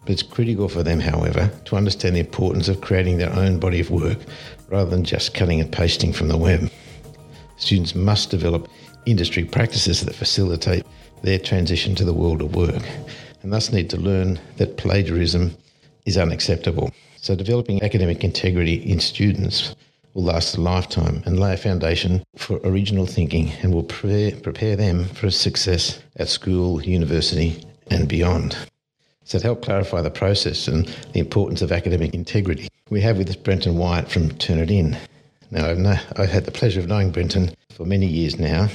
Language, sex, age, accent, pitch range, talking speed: English, male, 60-79, Australian, 85-100 Hz, 170 wpm